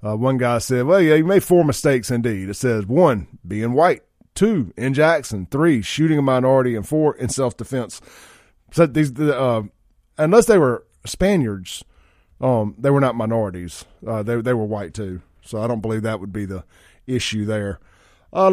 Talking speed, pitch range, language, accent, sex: 185 wpm, 105-140 Hz, English, American, male